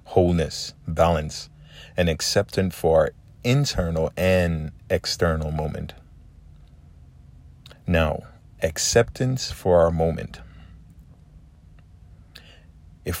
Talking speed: 75 wpm